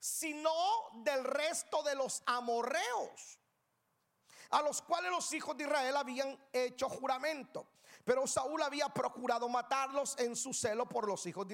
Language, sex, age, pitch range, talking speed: Spanish, male, 40-59, 235-310 Hz, 145 wpm